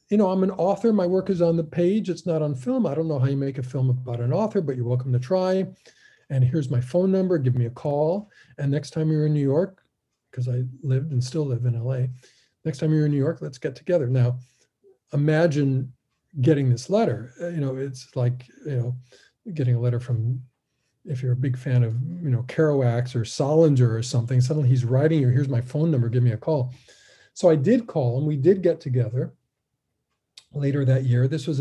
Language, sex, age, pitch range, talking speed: English, male, 40-59, 125-160 Hz, 225 wpm